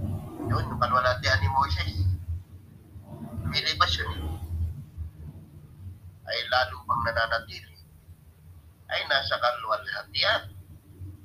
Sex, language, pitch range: male, English, 90-115 Hz